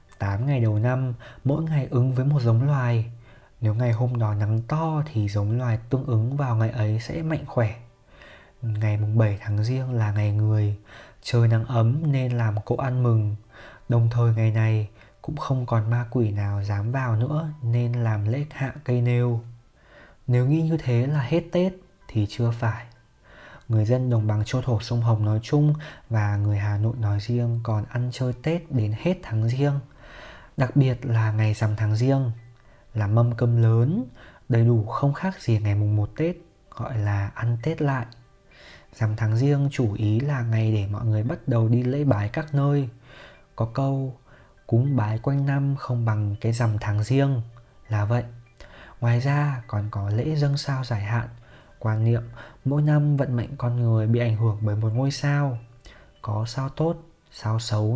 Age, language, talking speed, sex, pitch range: 20-39, Vietnamese, 190 wpm, male, 110-135 Hz